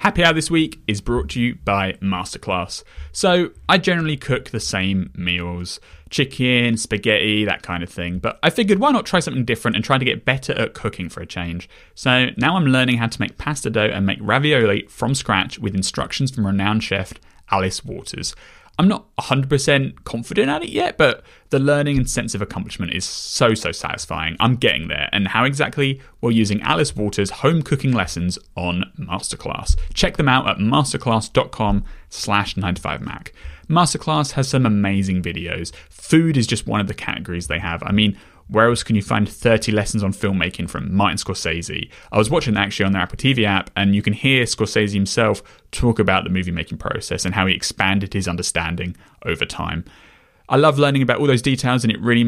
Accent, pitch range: British, 95-130 Hz